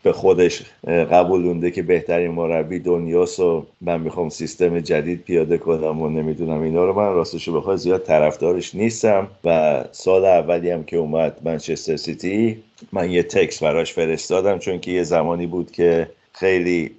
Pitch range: 80-90 Hz